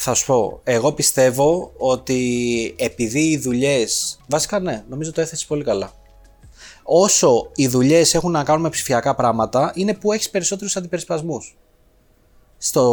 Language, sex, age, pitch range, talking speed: Greek, male, 30-49, 125-200 Hz, 145 wpm